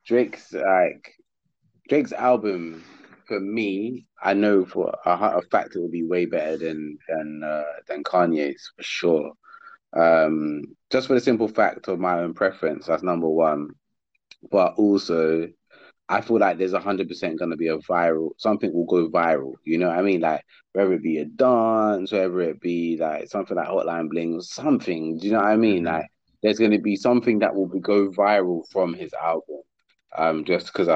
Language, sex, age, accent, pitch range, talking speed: English, male, 20-39, British, 80-100 Hz, 190 wpm